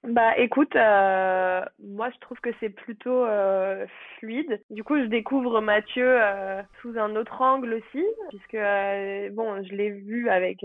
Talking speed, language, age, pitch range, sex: 165 wpm, French, 20-39, 195-245 Hz, female